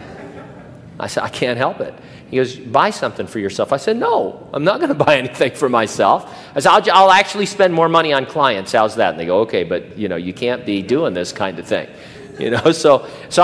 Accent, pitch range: American, 120-160 Hz